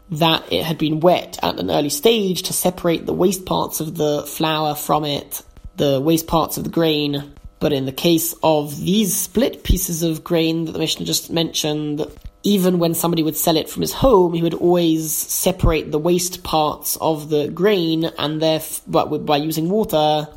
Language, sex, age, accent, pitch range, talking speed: English, male, 20-39, British, 155-175 Hz, 190 wpm